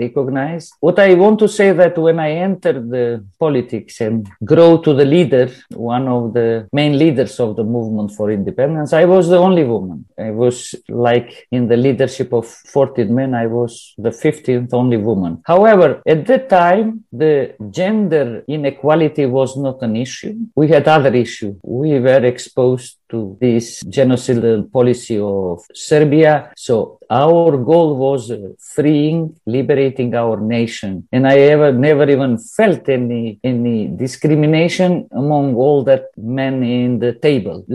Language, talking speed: Turkish, 155 wpm